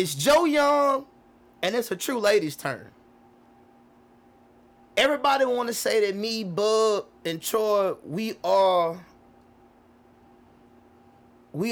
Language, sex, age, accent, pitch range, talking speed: English, male, 30-49, American, 185-290 Hz, 110 wpm